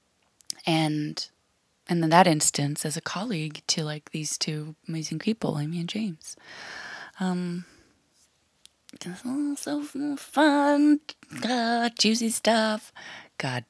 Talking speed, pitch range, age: 105 wpm, 155-220 Hz, 20-39